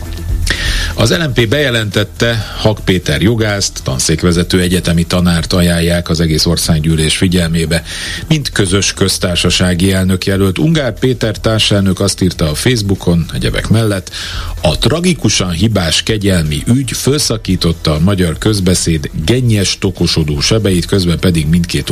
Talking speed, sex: 120 wpm, male